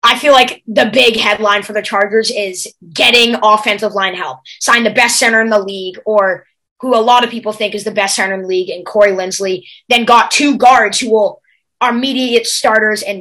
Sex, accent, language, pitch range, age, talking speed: female, American, English, 200-240 Hz, 20-39, 220 wpm